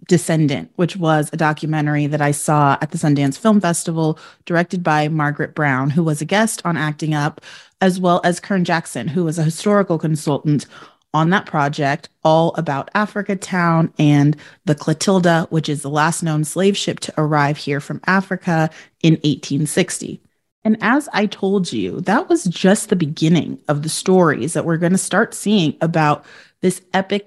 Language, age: English, 30-49